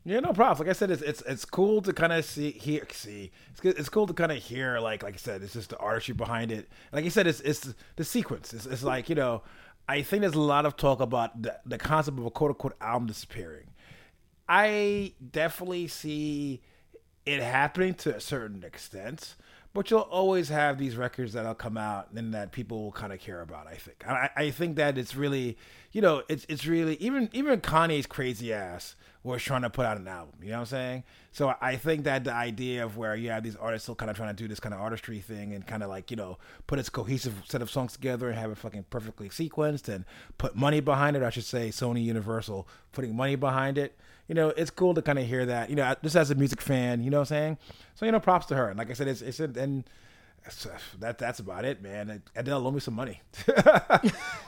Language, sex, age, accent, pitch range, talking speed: English, male, 30-49, American, 115-150 Hz, 240 wpm